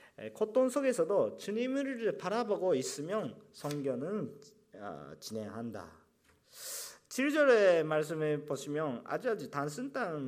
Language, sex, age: Japanese, male, 40-59